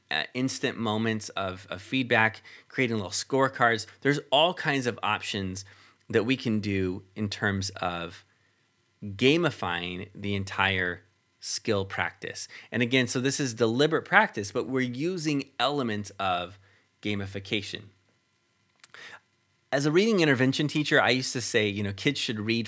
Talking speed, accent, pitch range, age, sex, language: 140 wpm, American, 100-130 Hz, 30-49, male, English